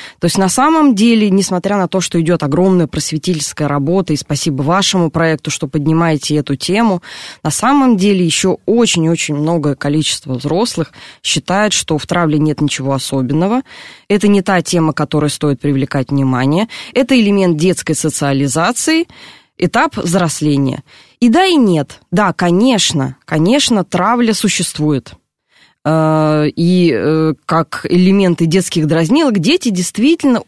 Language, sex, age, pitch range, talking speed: Russian, female, 20-39, 150-210 Hz, 130 wpm